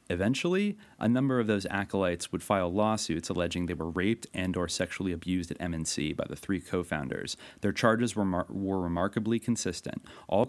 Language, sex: English, male